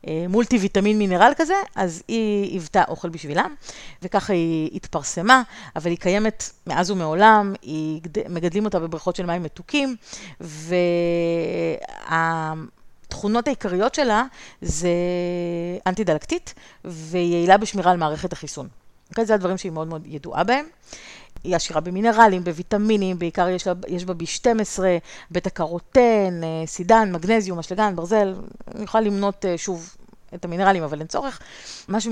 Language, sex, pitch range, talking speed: Hebrew, female, 170-210 Hz, 130 wpm